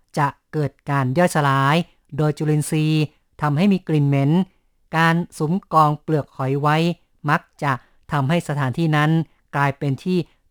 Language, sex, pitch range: Thai, female, 140-160 Hz